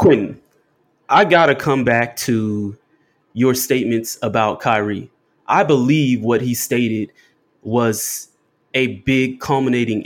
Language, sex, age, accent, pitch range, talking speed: English, male, 20-39, American, 115-135 Hz, 120 wpm